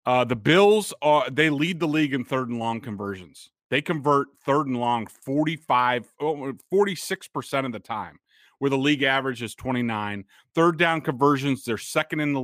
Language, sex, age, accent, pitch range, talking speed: English, male, 30-49, American, 120-155 Hz, 180 wpm